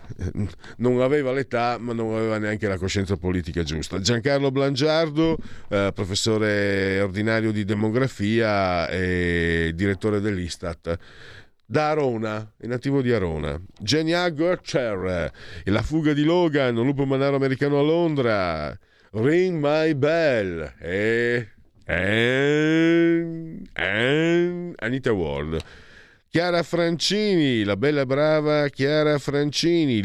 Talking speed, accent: 110 wpm, native